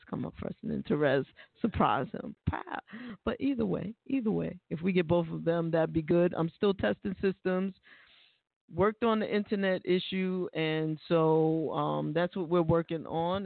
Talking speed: 175 wpm